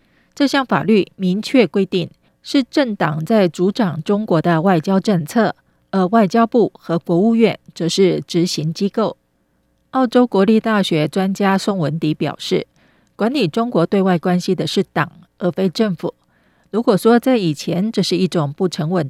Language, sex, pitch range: Chinese, female, 170-220 Hz